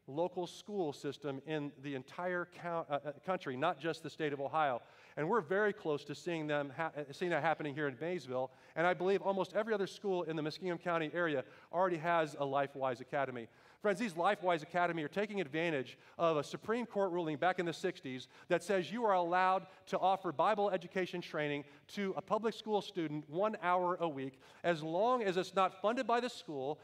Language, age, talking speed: Dutch, 40-59, 200 wpm